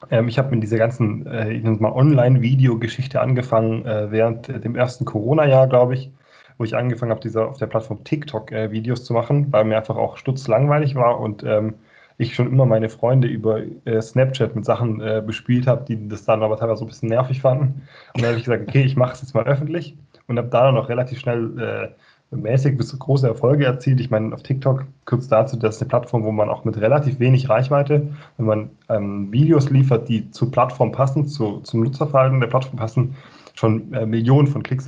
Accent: German